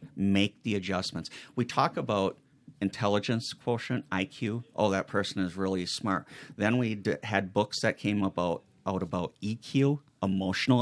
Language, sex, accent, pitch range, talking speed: English, male, American, 90-110 Hz, 145 wpm